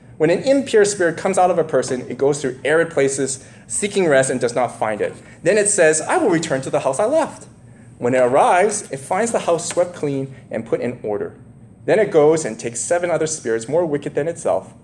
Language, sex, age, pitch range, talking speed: English, male, 20-39, 120-170 Hz, 230 wpm